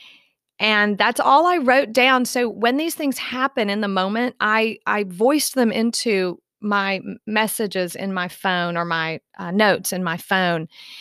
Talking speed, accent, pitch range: 170 wpm, American, 185-245 Hz